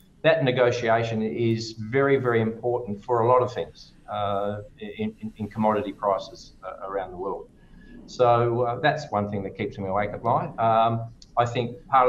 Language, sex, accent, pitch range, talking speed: English, male, Australian, 105-125 Hz, 180 wpm